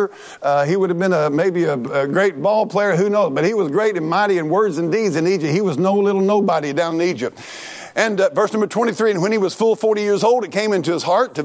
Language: English